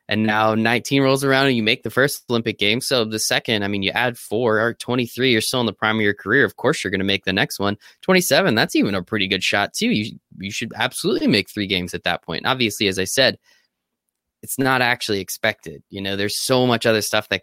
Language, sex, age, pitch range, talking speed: English, male, 20-39, 100-125 Hz, 255 wpm